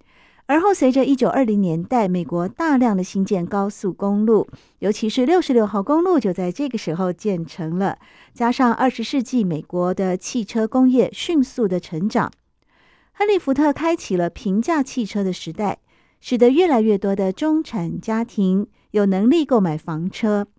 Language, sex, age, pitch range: Chinese, female, 50-69, 185-255 Hz